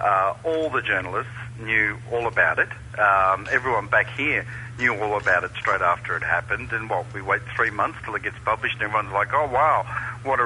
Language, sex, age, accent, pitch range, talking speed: English, male, 40-59, Australian, 110-125 Hz, 210 wpm